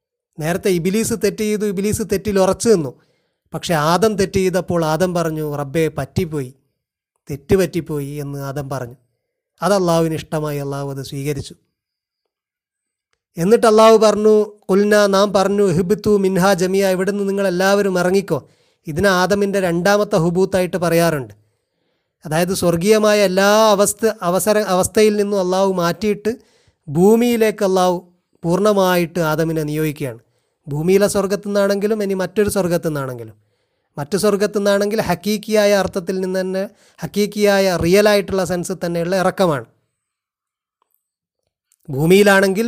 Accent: native